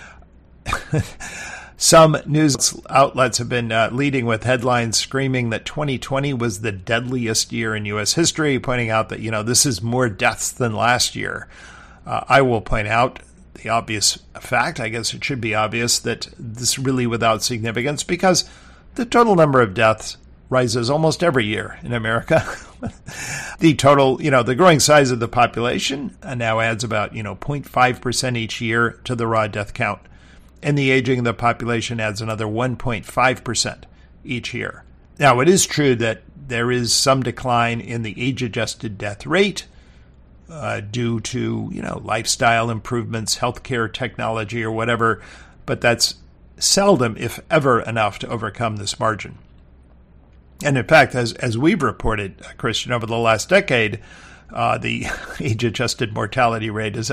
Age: 50-69